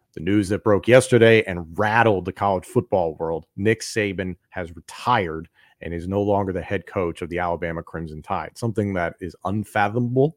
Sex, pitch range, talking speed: male, 90-110 Hz, 180 wpm